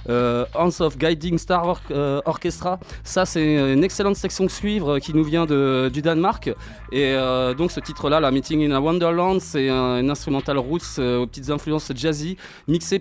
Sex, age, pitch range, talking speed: male, 20-39, 140-175 Hz, 205 wpm